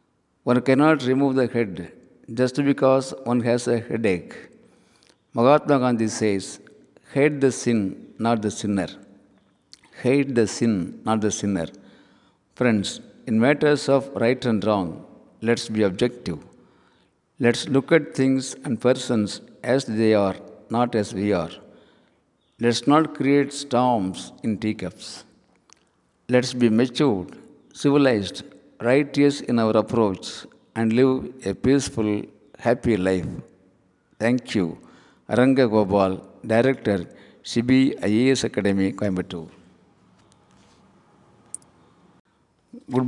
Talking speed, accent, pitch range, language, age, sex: 110 wpm, native, 105-130 Hz, Tamil, 50-69, male